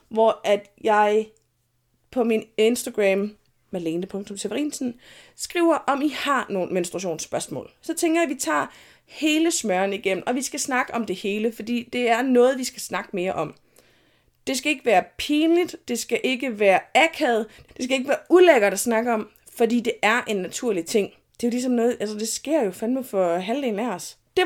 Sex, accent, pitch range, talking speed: female, native, 210-280 Hz, 190 wpm